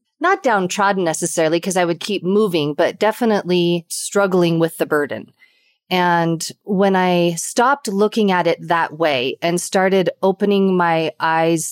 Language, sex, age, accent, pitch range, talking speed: English, female, 30-49, American, 170-205 Hz, 145 wpm